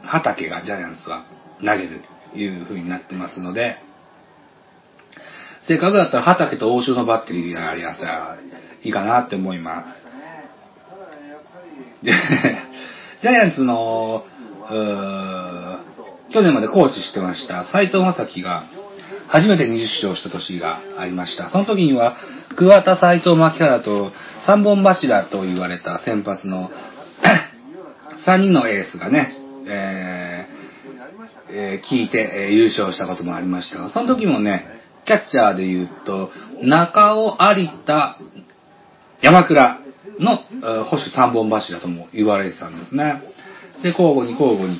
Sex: male